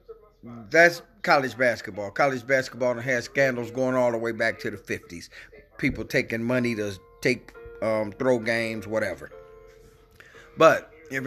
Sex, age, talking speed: male, 30-49, 140 wpm